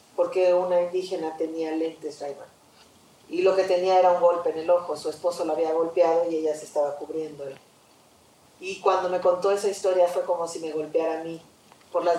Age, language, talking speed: 40-59, English, 205 wpm